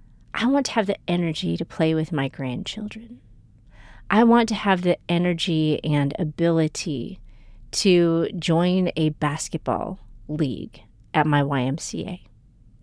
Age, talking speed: 40-59, 125 wpm